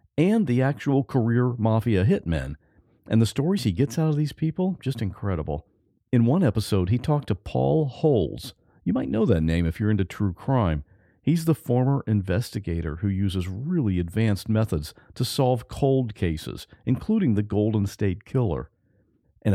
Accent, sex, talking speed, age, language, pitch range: American, male, 165 wpm, 50-69, English, 95-135 Hz